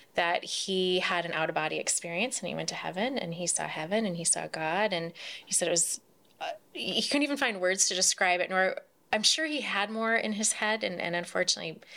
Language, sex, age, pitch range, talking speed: English, female, 20-39, 170-205 Hz, 225 wpm